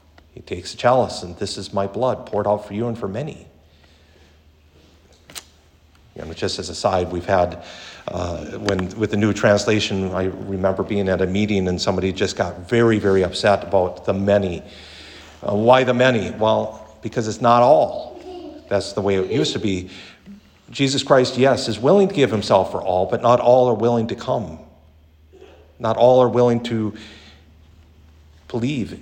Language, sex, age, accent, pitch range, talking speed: English, male, 50-69, American, 80-105 Hz, 175 wpm